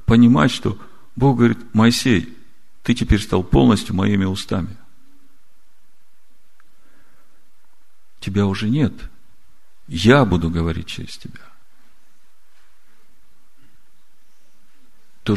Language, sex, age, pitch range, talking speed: Russian, male, 50-69, 90-120 Hz, 80 wpm